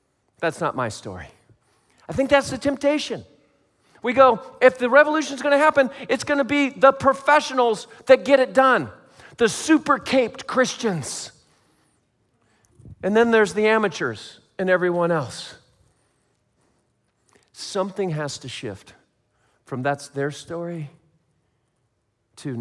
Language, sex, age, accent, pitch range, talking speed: English, male, 40-59, American, 140-200 Hz, 120 wpm